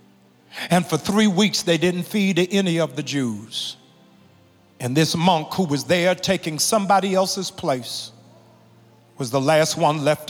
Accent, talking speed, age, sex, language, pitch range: American, 150 wpm, 50-69, male, English, 150-200 Hz